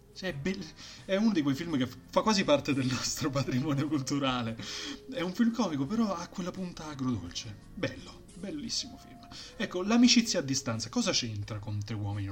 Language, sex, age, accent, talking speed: Italian, male, 30-49, native, 175 wpm